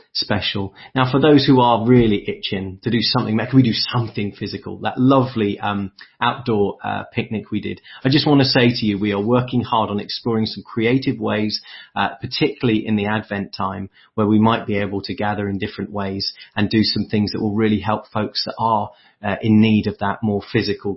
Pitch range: 105-130 Hz